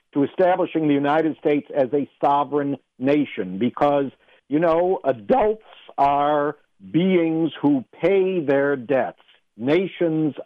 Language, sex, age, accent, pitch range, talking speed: English, male, 60-79, American, 125-165 Hz, 115 wpm